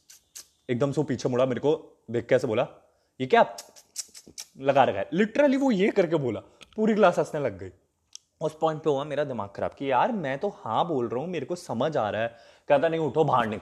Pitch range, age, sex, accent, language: 115-155 Hz, 20-39, male, native, Hindi